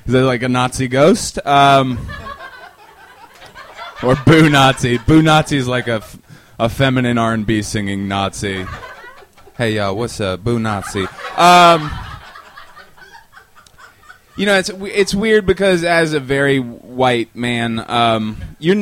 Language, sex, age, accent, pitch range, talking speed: English, male, 20-39, American, 110-170 Hz, 135 wpm